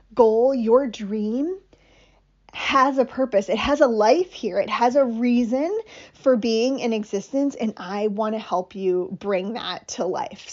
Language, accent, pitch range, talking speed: English, American, 220-280 Hz, 165 wpm